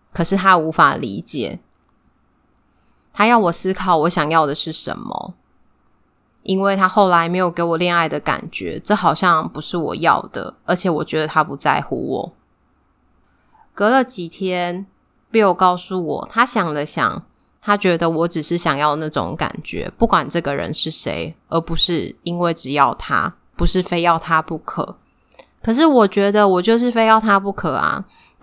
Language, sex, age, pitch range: Chinese, female, 20-39, 165-195 Hz